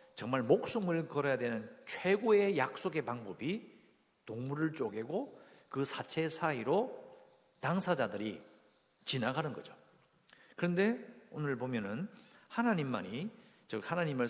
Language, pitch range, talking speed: English, 125-210 Hz, 90 wpm